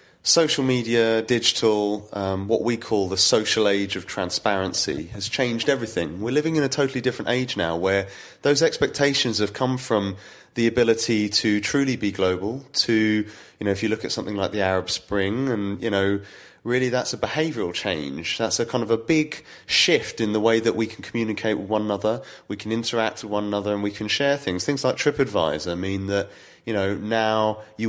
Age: 30-49